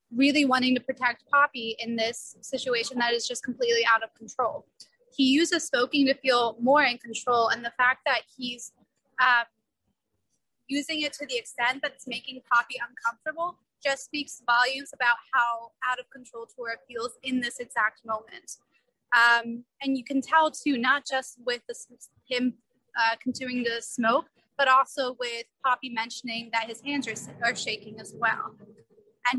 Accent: American